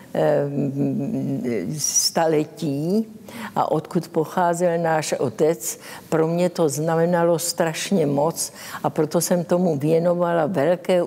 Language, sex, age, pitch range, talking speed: Czech, female, 60-79, 150-180 Hz, 100 wpm